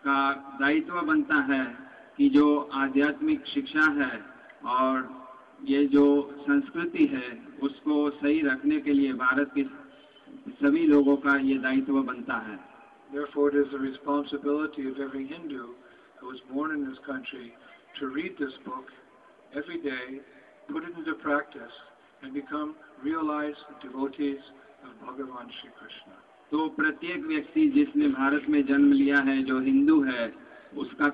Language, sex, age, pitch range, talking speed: English, male, 50-69, 140-155 Hz, 85 wpm